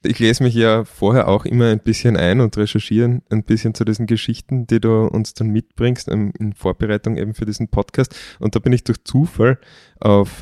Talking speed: 200 wpm